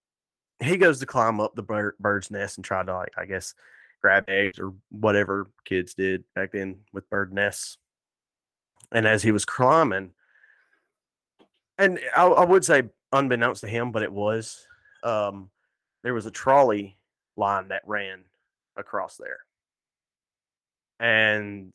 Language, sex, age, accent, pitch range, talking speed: English, male, 20-39, American, 100-115 Hz, 140 wpm